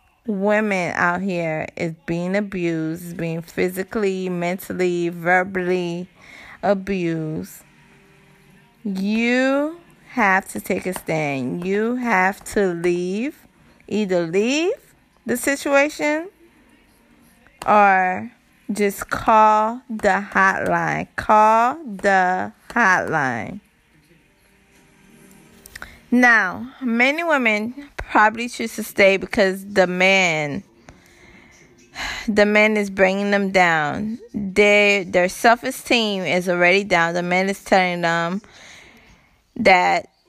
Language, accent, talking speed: English, American, 90 wpm